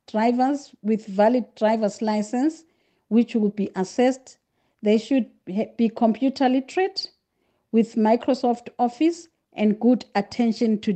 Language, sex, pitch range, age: English, female, 210-250 Hz, 50-69